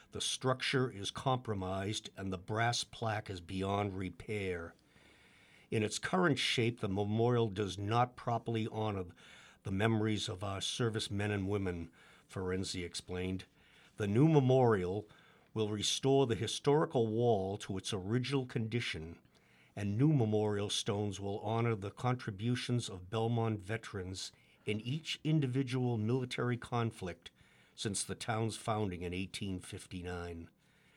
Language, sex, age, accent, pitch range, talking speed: English, male, 60-79, American, 95-120 Hz, 125 wpm